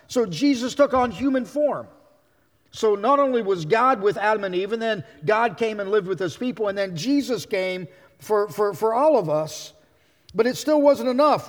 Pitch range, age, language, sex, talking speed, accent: 165-235 Hz, 40-59, English, male, 205 wpm, American